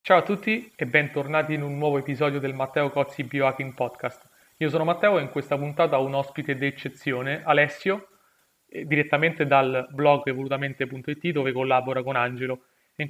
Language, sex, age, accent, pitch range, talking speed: Italian, male, 30-49, native, 135-155 Hz, 160 wpm